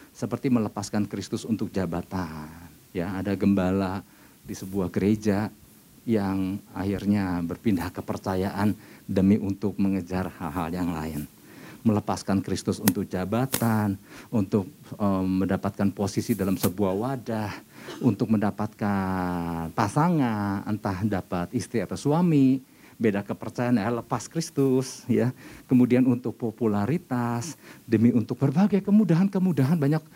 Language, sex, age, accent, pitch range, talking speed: Indonesian, male, 50-69, native, 100-140 Hz, 105 wpm